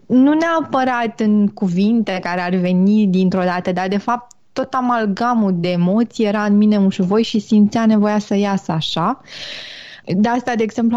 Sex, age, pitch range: female, 20-39, 190-245 Hz